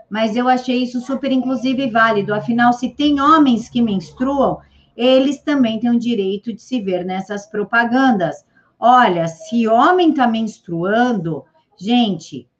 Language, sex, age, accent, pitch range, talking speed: Portuguese, female, 50-69, Brazilian, 205-245 Hz, 140 wpm